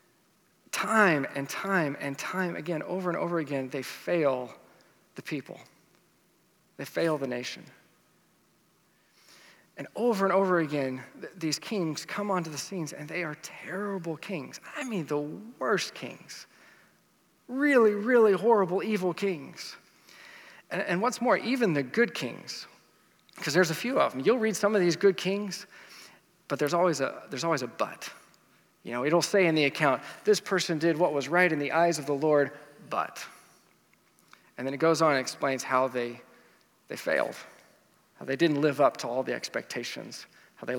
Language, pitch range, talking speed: English, 145-195 Hz, 170 wpm